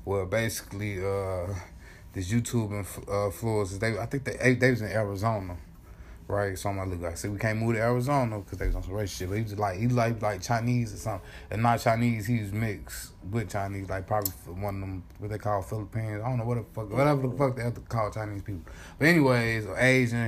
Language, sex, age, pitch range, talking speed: English, male, 20-39, 95-120 Hz, 230 wpm